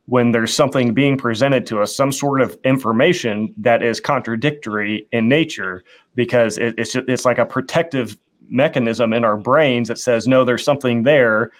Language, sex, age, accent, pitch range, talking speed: English, male, 30-49, American, 115-135 Hz, 165 wpm